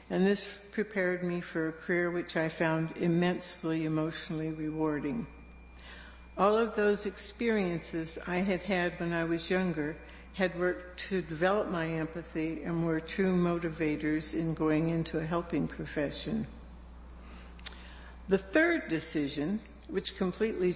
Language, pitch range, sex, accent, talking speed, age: English, 155-180 Hz, female, American, 130 wpm, 60-79